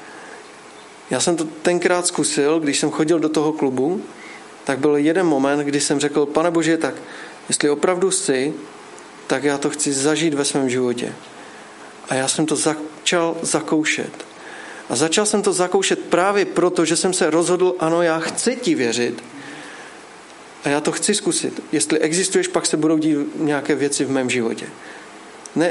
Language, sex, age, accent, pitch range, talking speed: Czech, male, 40-59, native, 145-170 Hz, 165 wpm